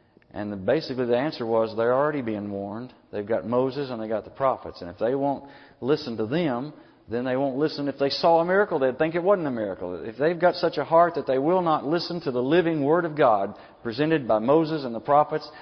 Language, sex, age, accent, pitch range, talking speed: English, male, 50-69, American, 125-155 Hz, 240 wpm